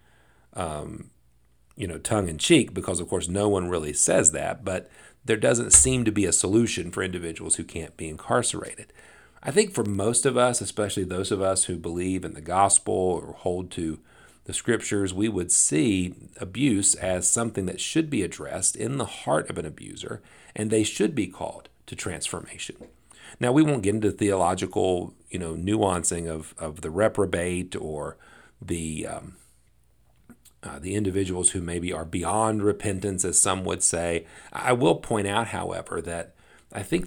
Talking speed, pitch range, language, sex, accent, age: 170 wpm, 85-110 Hz, English, male, American, 40-59